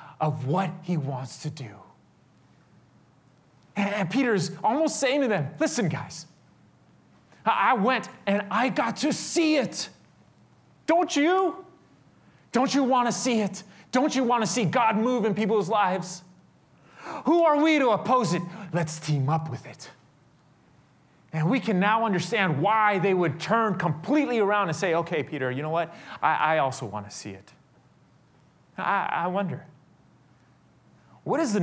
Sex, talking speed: male, 150 wpm